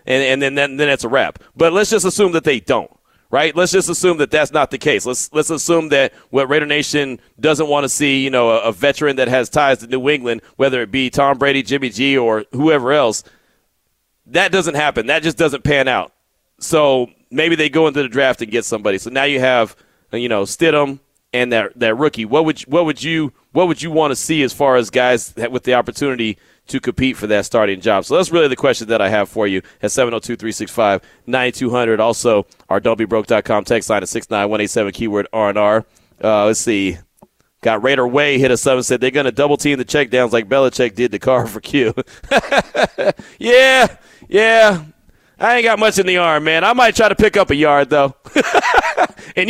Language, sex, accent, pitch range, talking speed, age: English, male, American, 125-170 Hz, 215 wpm, 40-59